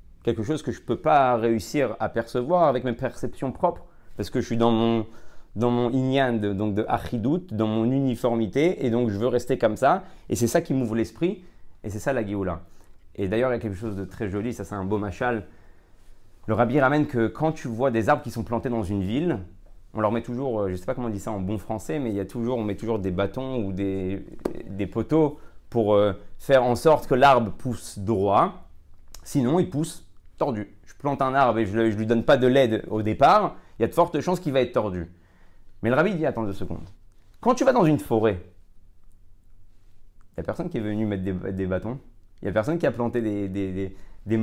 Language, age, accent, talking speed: French, 30-49, French, 235 wpm